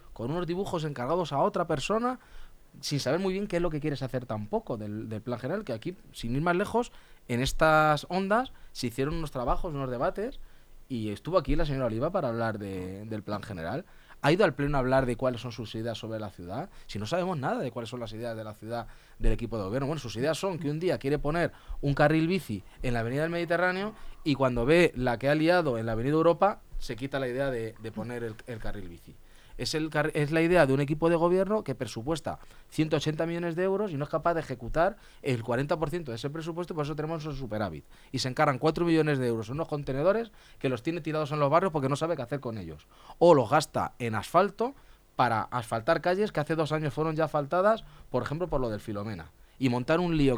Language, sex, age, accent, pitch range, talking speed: Spanish, male, 20-39, Spanish, 120-165 Hz, 235 wpm